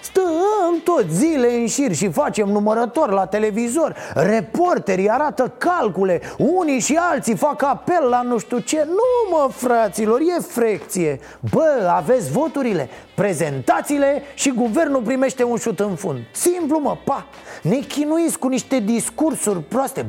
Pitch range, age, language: 210-315 Hz, 30-49, Romanian